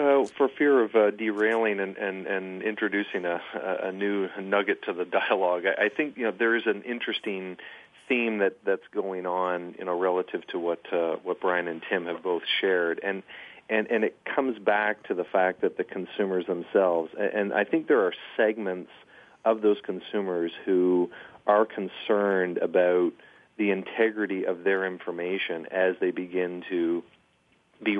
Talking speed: 150 wpm